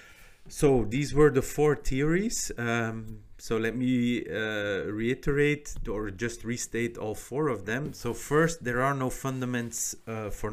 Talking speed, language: 150 wpm, English